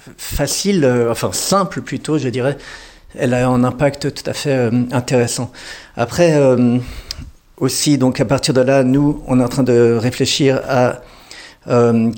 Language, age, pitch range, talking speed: French, 50-69, 115-135 Hz, 165 wpm